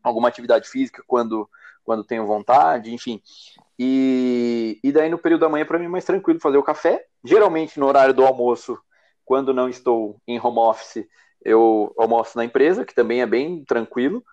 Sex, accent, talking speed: male, Brazilian, 180 wpm